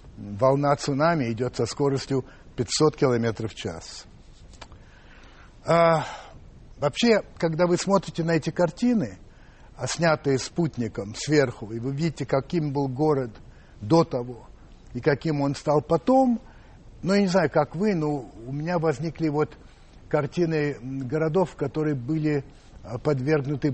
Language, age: Russian, 60-79